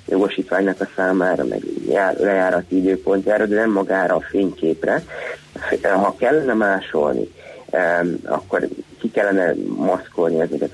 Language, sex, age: Hungarian, male, 30-49